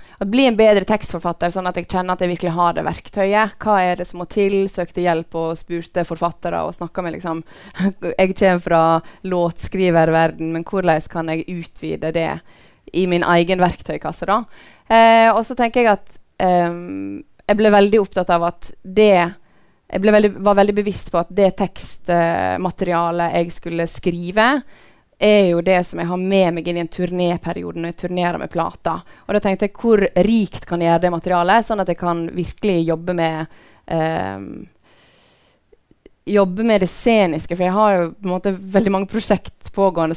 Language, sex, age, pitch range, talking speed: English, female, 20-39, 170-195 Hz, 180 wpm